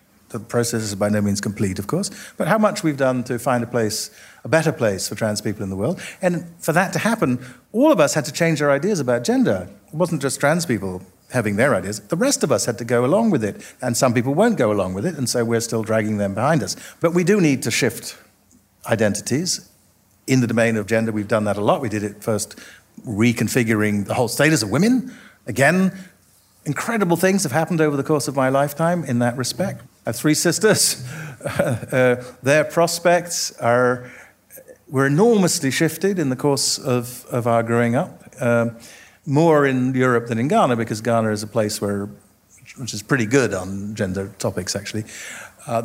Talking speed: 210 wpm